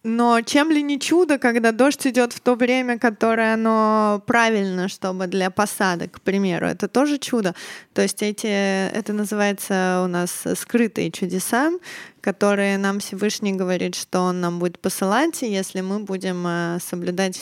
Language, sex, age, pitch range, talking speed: Russian, female, 20-39, 200-245 Hz, 150 wpm